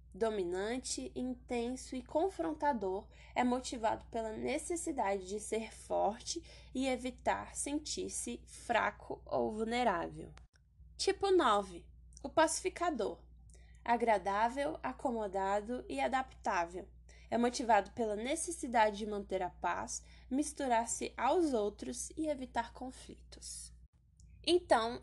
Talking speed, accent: 95 wpm, Brazilian